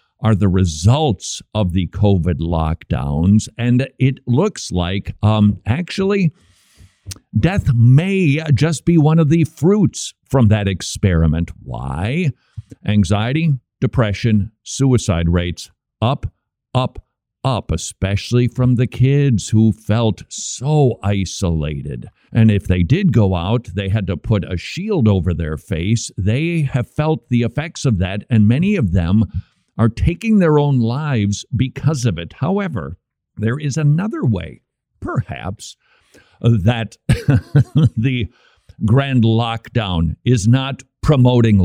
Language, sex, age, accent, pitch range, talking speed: English, male, 50-69, American, 100-140 Hz, 125 wpm